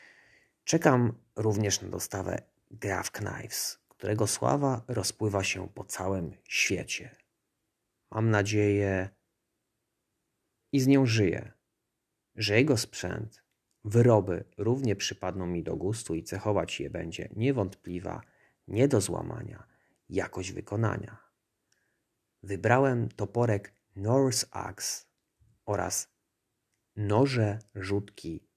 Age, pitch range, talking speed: 30-49, 95-115 Hz, 95 wpm